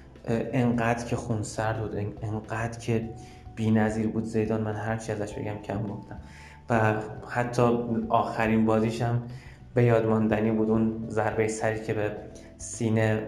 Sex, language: male, Persian